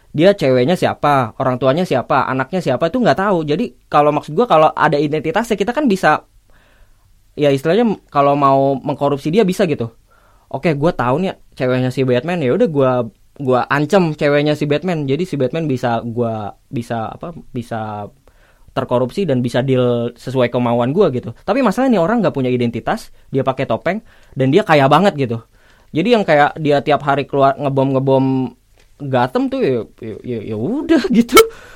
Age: 20-39